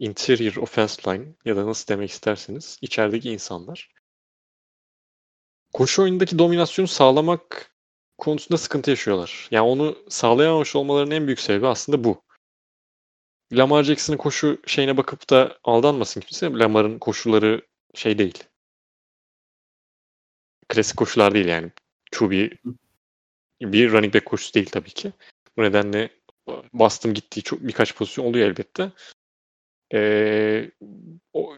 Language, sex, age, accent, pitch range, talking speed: Turkish, male, 30-49, native, 105-150 Hz, 115 wpm